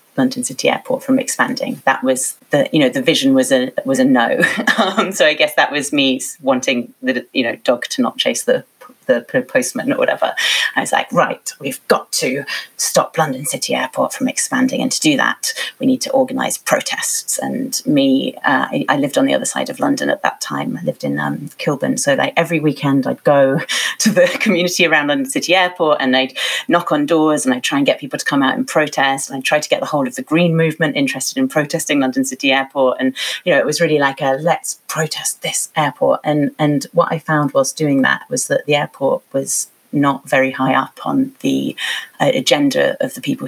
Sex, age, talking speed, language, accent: female, 30-49, 225 wpm, English, British